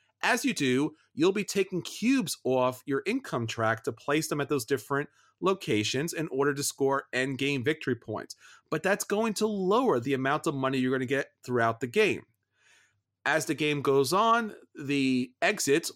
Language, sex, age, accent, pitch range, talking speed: English, male, 40-59, American, 135-185 Hz, 185 wpm